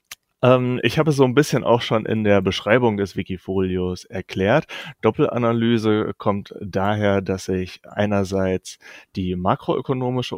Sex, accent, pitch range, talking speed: male, German, 100-120 Hz, 125 wpm